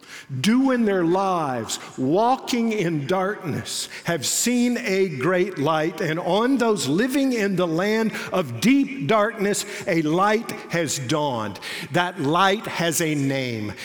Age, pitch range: 50-69, 150-200 Hz